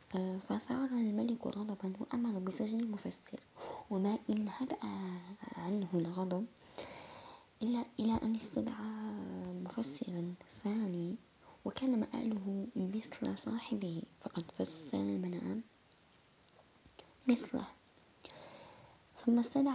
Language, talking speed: Arabic, 85 wpm